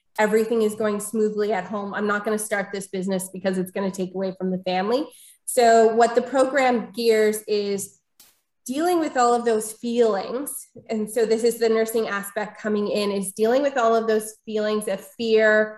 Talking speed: 200 wpm